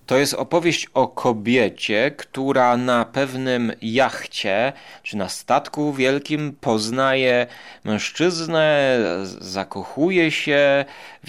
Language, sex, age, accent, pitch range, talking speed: Polish, male, 30-49, native, 115-145 Hz, 95 wpm